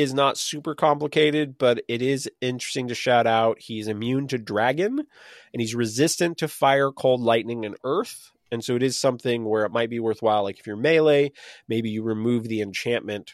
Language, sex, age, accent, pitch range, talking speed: English, male, 20-39, American, 105-145 Hz, 195 wpm